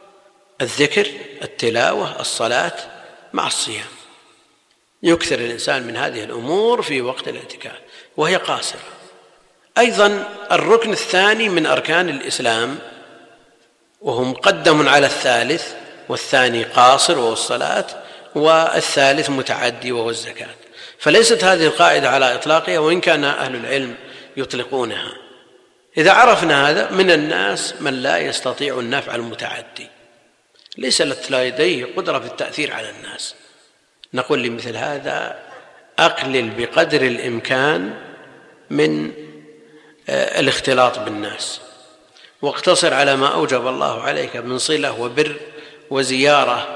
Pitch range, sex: 130-195 Hz, male